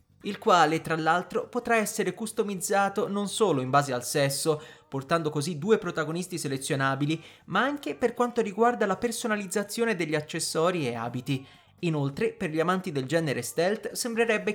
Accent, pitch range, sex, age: native, 145-210 Hz, male, 30-49